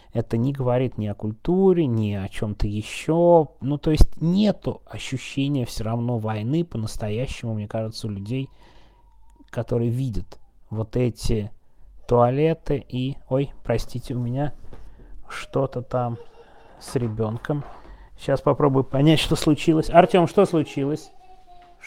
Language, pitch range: Russian, 115-160 Hz